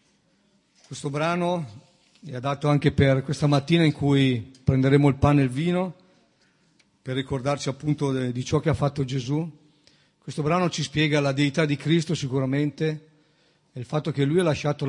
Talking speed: 165 wpm